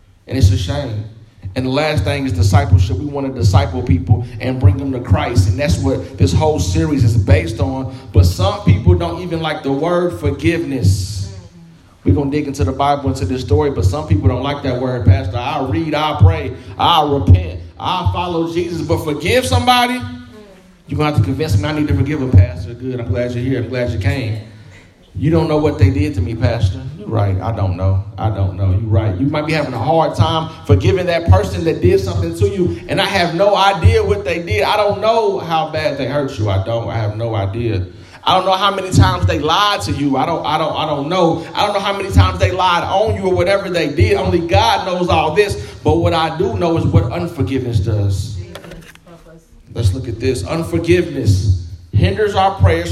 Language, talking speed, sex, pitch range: English, 225 wpm, male, 95-150 Hz